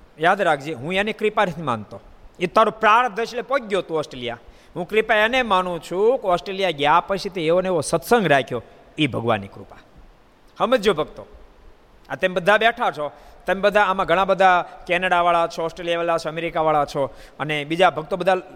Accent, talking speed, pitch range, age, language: native, 150 wpm, 160-220 Hz, 50-69, Gujarati